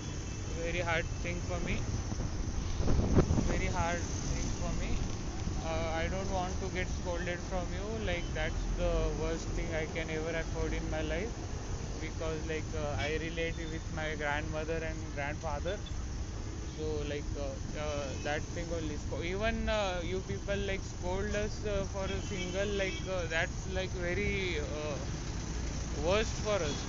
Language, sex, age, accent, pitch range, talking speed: Marathi, male, 20-39, native, 85-105 Hz, 160 wpm